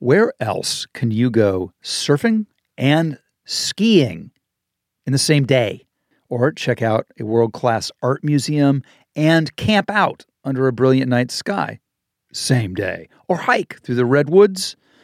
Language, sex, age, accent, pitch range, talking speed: English, male, 50-69, American, 120-150 Hz, 135 wpm